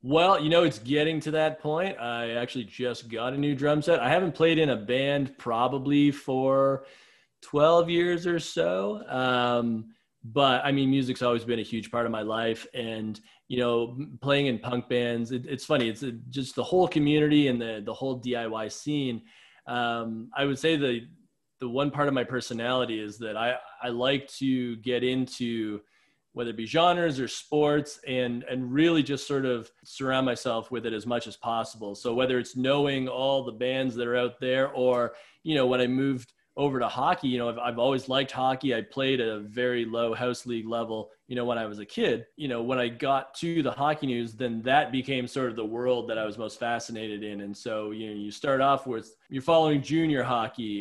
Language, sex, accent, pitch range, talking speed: English, male, American, 115-140 Hz, 210 wpm